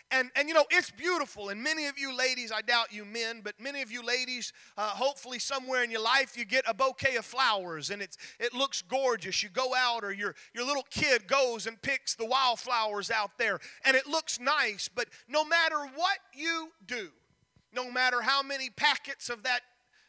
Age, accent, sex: 40-59, American, male